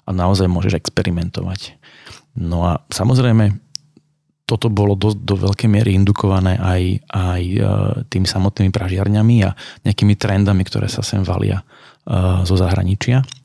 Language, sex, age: Slovak, male, 30-49